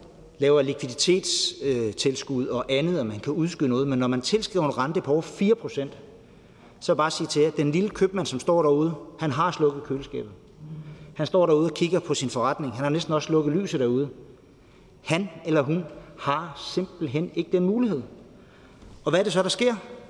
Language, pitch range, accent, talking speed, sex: Danish, 140-175 Hz, native, 190 wpm, male